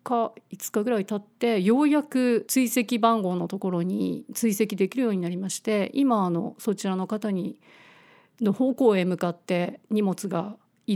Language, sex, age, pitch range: Japanese, female, 50-69, 190-230 Hz